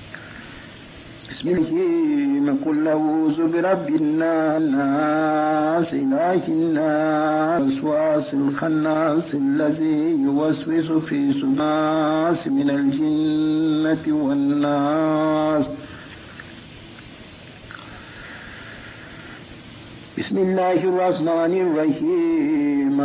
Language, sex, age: English, male, 60-79